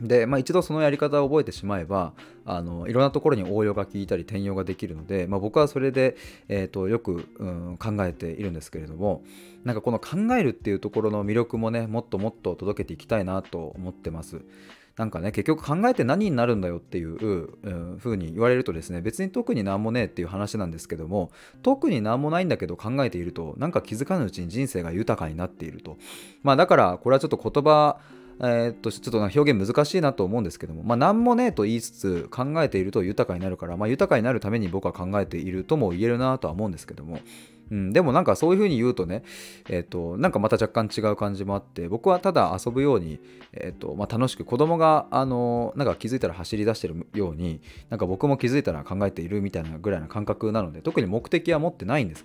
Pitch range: 90-130 Hz